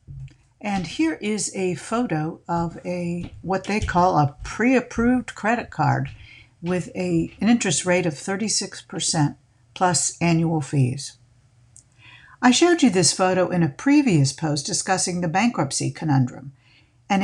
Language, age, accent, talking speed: English, 60-79, American, 130 wpm